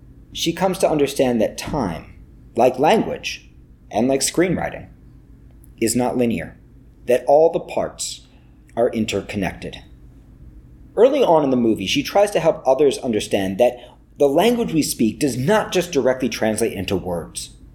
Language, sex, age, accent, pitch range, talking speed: English, male, 40-59, American, 110-175 Hz, 145 wpm